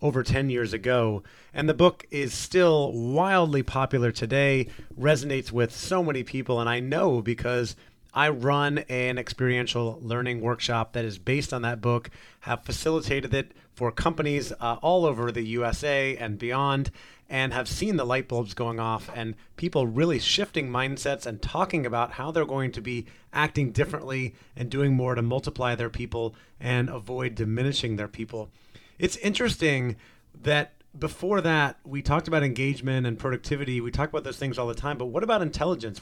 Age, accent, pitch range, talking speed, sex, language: 30-49, American, 120-150 Hz, 170 wpm, male, English